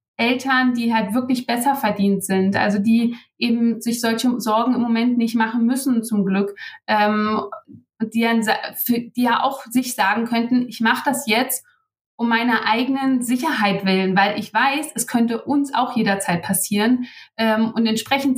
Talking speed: 160 wpm